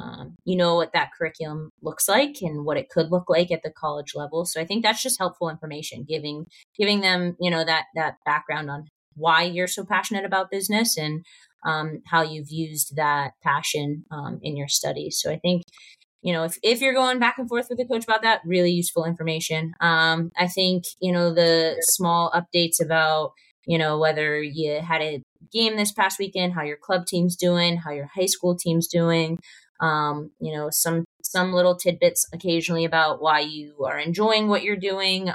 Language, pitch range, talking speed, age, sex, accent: English, 160-185 Hz, 200 wpm, 20-39, female, American